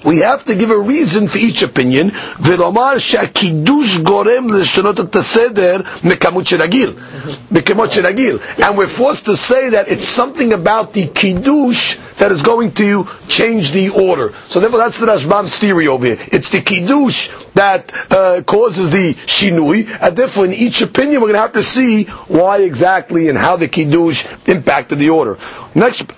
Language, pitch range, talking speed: English, 175-225 Hz, 145 wpm